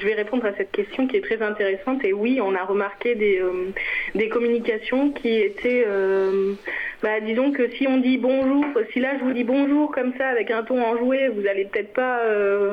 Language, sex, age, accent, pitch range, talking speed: French, female, 20-39, French, 210-265 Hz, 210 wpm